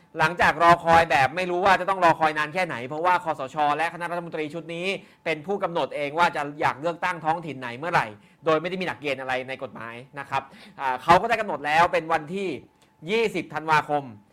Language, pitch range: Thai, 145-175 Hz